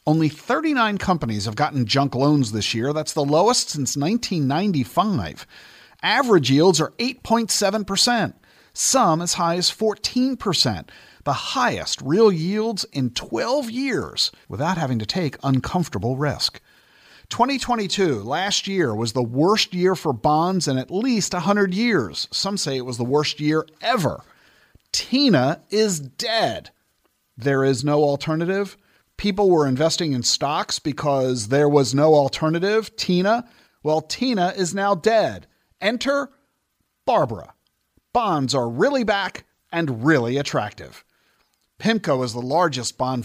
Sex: male